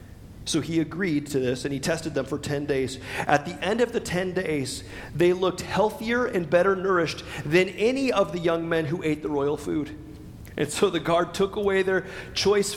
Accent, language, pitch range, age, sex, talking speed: American, English, 150-200 Hz, 40-59, male, 205 wpm